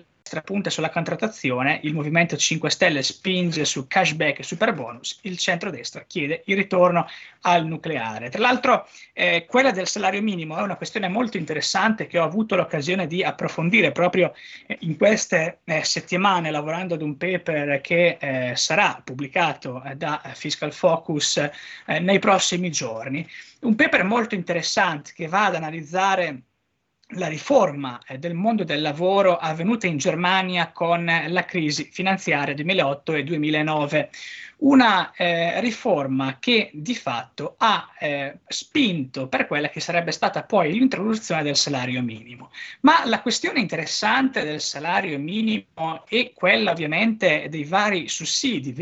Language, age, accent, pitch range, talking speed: Italian, 20-39, native, 150-205 Hz, 140 wpm